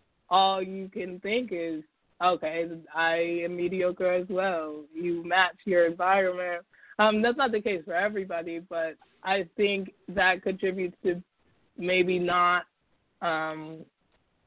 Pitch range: 170-205 Hz